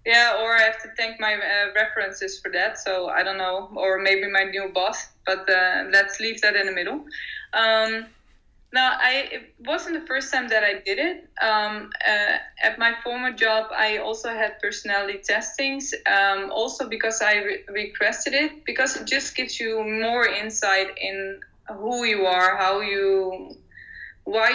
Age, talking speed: 20-39, 175 wpm